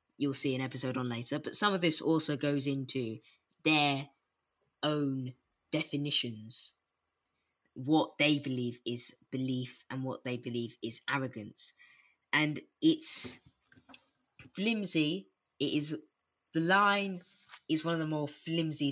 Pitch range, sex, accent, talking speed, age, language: 130-165 Hz, female, British, 125 wpm, 20-39, English